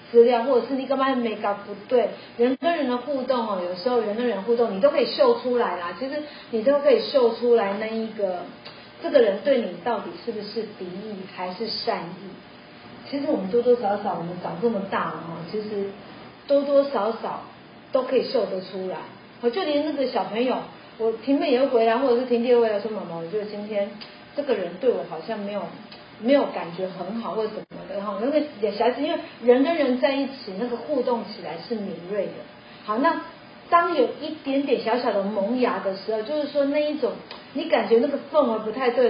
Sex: female